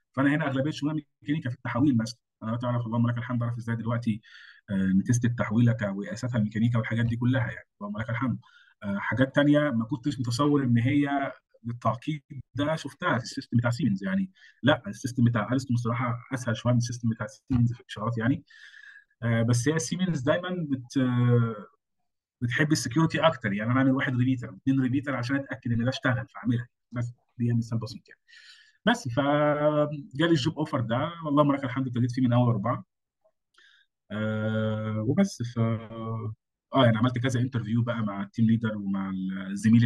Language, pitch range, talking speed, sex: Arabic, 115-140 Hz, 165 wpm, male